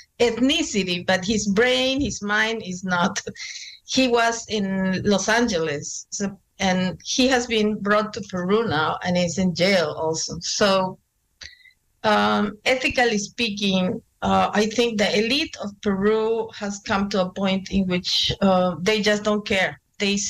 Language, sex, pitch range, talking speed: English, female, 195-230 Hz, 150 wpm